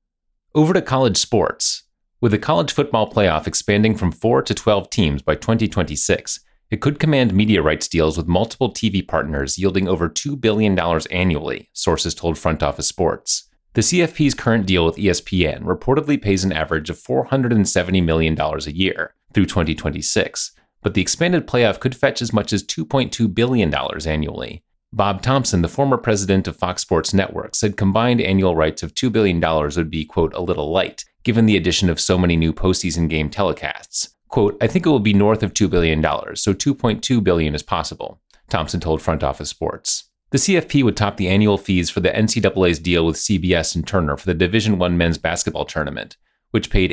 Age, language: 30-49, English